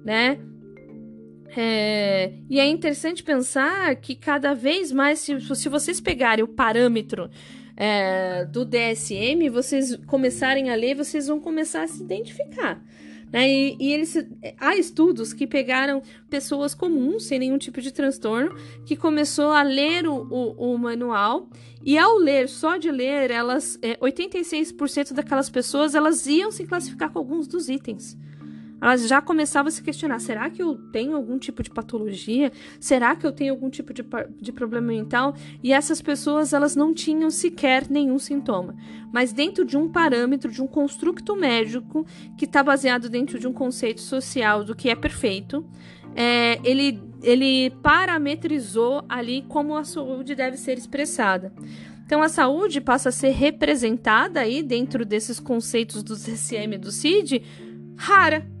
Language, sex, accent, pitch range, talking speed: Portuguese, female, Brazilian, 230-295 Hz, 150 wpm